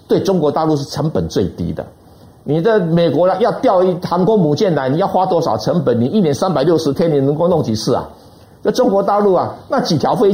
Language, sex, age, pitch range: Chinese, male, 60-79, 150-210 Hz